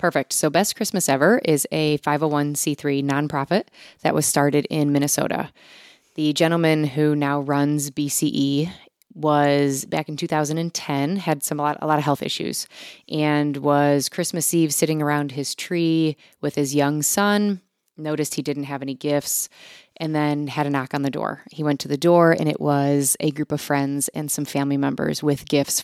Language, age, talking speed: English, 20-39, 180 wpm